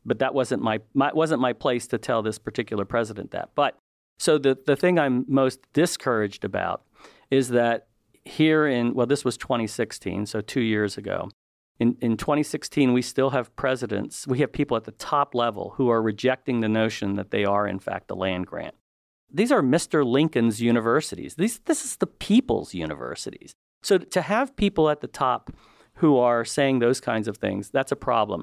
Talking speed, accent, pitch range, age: 190 wpm, American, 110-135 Hz, 40-59